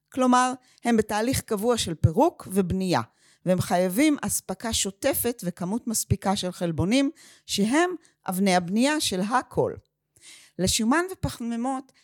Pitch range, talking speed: 175-250 Hz, 110 wpm